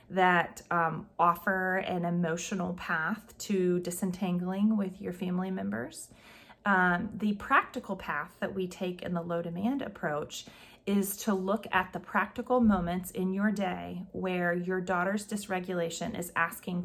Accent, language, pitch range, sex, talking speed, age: American, English, 180-215 Hz, female, 140 wpm, 30-49